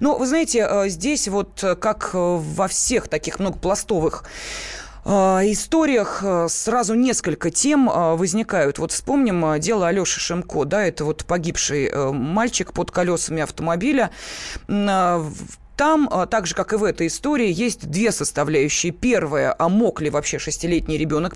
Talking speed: 130 wpm